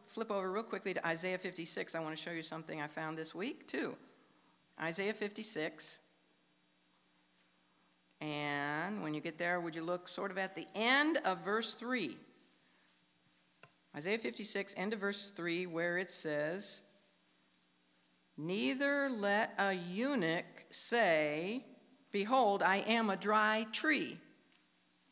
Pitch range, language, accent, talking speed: 165-250 Hz, English, American, 135 wpm